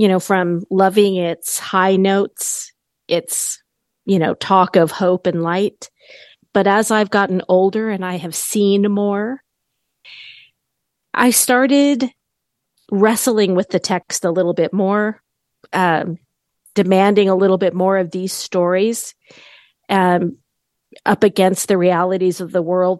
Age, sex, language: 40-59, female, English